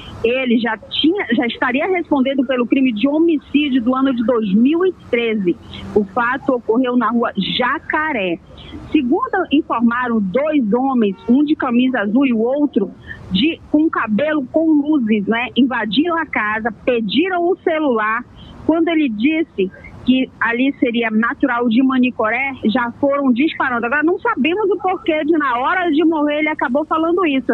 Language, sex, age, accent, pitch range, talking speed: Portuguese, female, 40-59, Brazilian, 245-310 Hz, 150 wpm